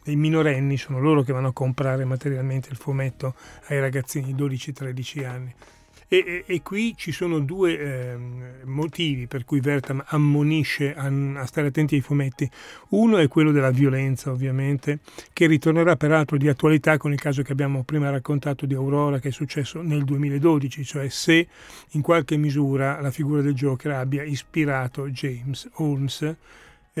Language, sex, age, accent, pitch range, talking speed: Italian, male, 40-59, native, 135-155 Hz, 165 wpm